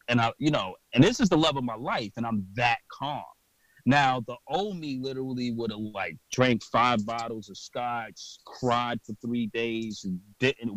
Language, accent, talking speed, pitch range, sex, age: English, American, 190 wpm, 105-125 Hz, male, 30-49